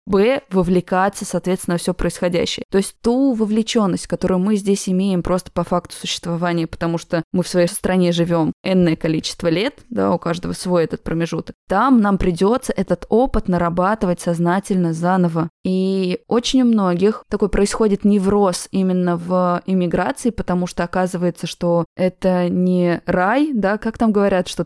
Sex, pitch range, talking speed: female, 170-200 Hz, 155 wpm